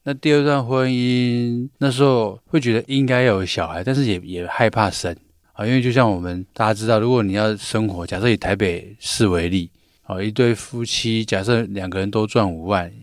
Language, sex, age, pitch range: Chinese, male, 20-39, 95-125 Hz